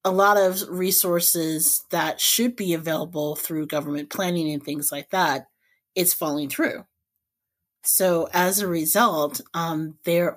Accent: American